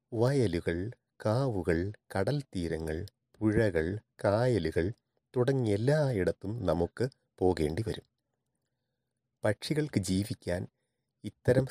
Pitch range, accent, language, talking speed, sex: 100-125 Hz, native, Malayalam, 65 wpm, male